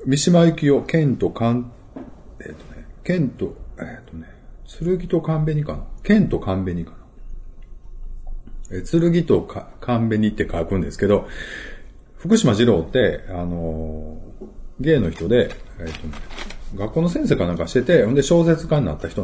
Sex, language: male, Japanese